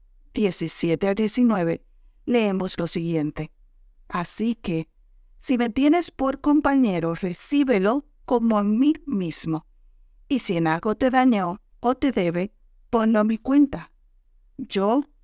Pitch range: 175-255 Hz